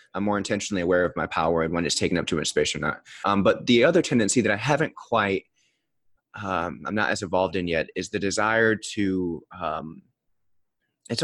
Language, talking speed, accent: English, 210 wpm, American